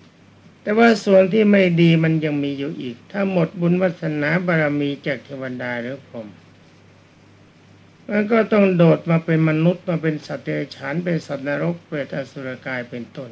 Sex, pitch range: male, 120-170 Hz